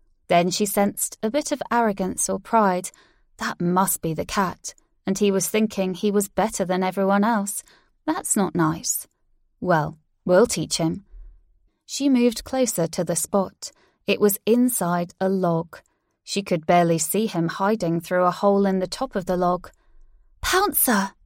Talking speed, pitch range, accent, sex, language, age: 165 wpm, 180-220 Hz, British, female, English, 20-39